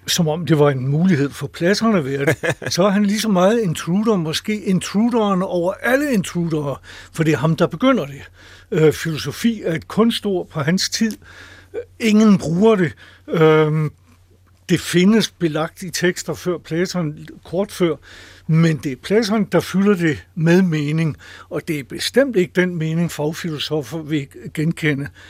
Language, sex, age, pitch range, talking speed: Danish, male, 60-79, 150-185 Hz, 165 wpm